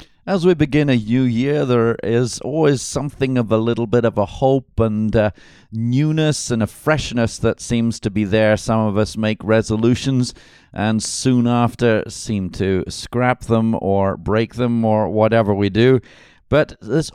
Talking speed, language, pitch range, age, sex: 170 wpm, English, 100-120 Hz, 50-69, male